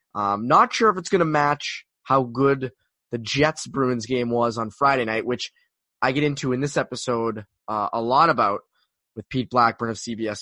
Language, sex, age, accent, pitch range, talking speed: English, male, 20-39, American, 115-145 Hz, 200 wpm